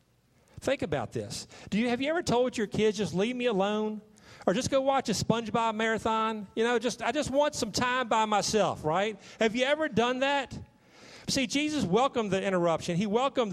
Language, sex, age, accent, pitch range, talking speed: English, male, 50-69, American, 185-245 Hz, 200 wpm